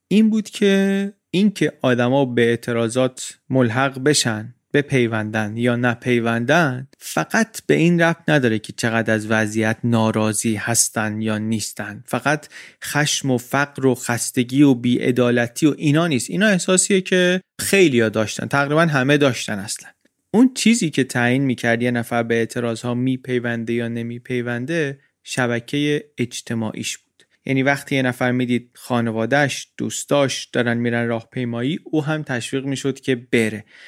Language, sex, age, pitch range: Persian, male, 30-49, 120-145 Hz